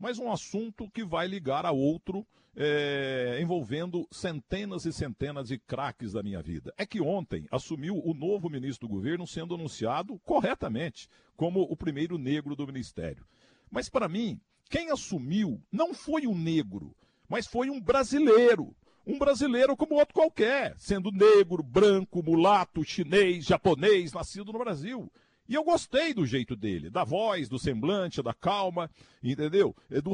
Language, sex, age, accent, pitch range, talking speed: Portuguese, male, 50-69, Brazilian, 145-205 Hz, 150 wpm